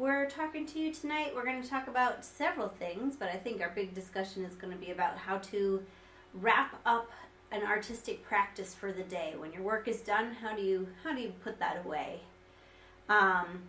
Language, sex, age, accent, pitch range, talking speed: English, female, 30-49, American, 185-230 Hz, 210 wpm